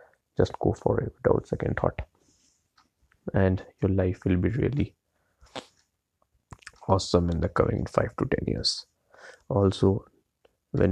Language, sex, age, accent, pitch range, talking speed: Hindi, male, 30-49, native, 90-120 Hz, 125 wpm